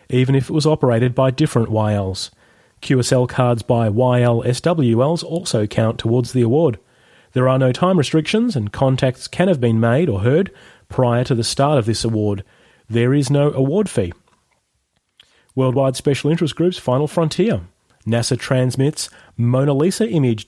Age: 30-49